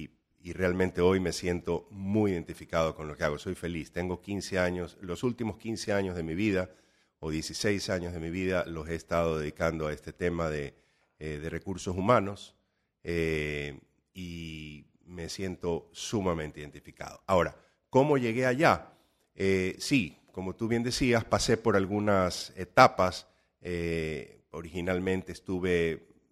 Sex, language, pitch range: male, Spanish, 85-100 Hz